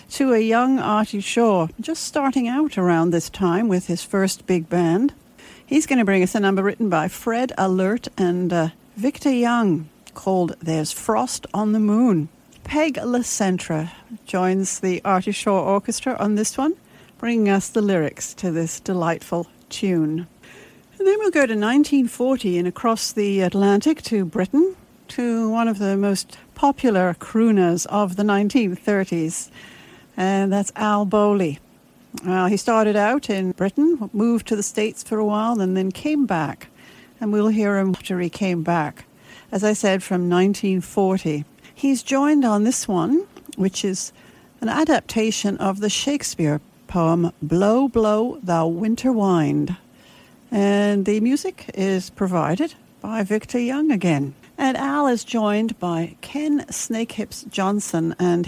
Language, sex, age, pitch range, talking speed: English, female, 60-79, 185-235 Hz, 150 wpm